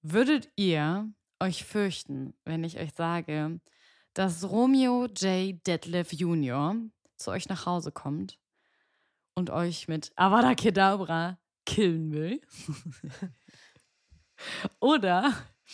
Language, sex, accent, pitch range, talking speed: German, female, German, 170-220 Hz, 100 wpm